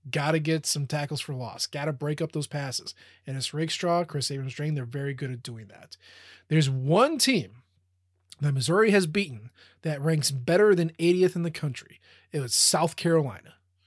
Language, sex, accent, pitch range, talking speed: English, male, American, 130-165 Hz, 190 wpm